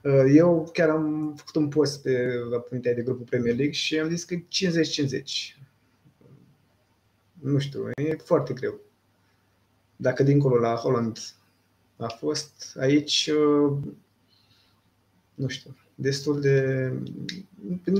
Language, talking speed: Romanian, 110 wpm